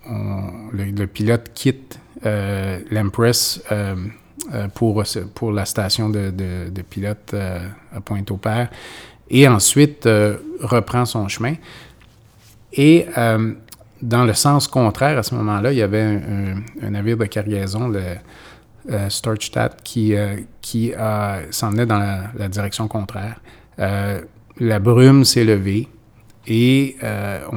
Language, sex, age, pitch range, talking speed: French, male, 30-49, 100-115 Hz, 135 wpm